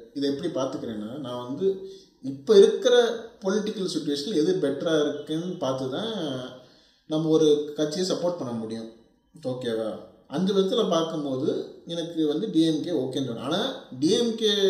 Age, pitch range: 30-49, 130-170 Hz